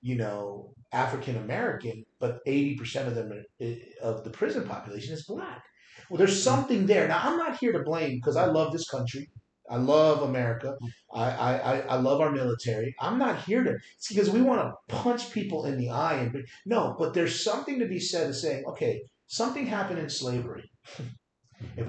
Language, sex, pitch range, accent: English, male, 125-205 Hz, American